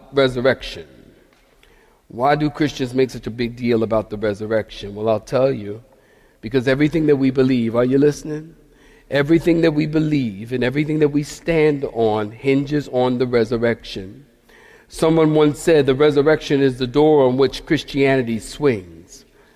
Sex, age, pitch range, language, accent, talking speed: male, 50-69, 125-160 Hz, English, American, 145 wpm